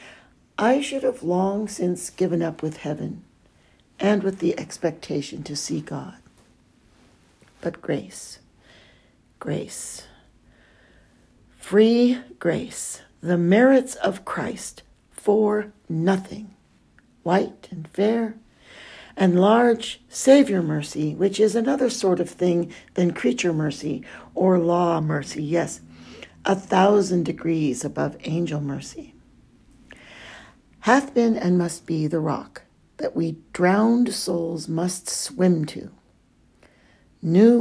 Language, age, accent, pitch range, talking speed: English, 60-79, American, 165-215 Hz, 110 wpm